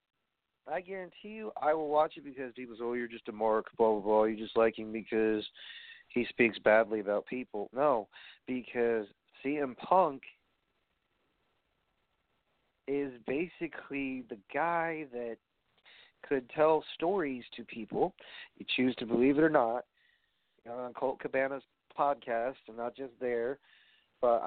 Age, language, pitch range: 40-59, English, 110-135 Hz